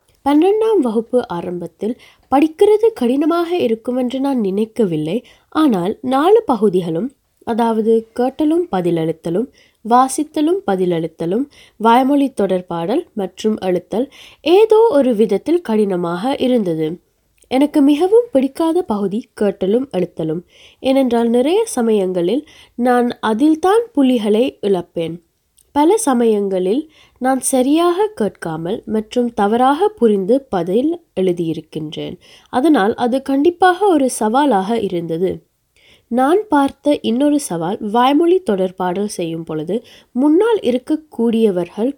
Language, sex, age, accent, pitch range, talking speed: Tamil, female, 20-39, native, 195-285 Hz, 95 wpm